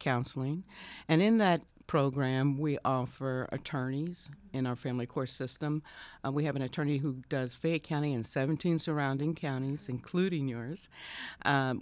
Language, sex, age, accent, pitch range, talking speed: English, female, 60-79, American, 125-155 Hz, 145 wpm